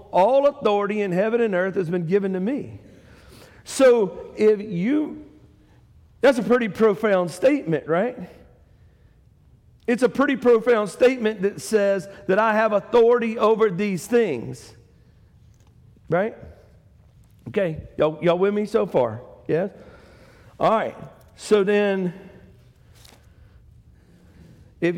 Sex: male